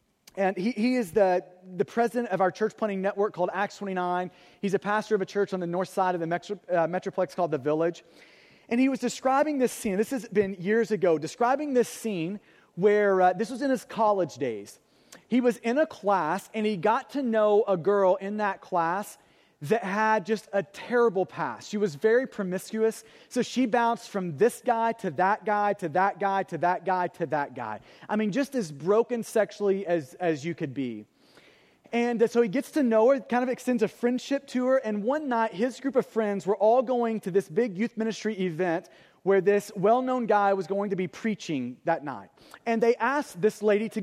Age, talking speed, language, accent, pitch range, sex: 30-49, 215 wpm, English, American, 190-235 Hz, male